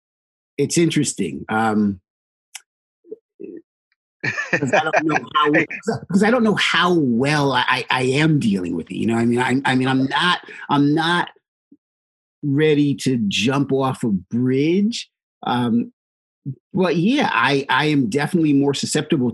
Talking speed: 140 wpm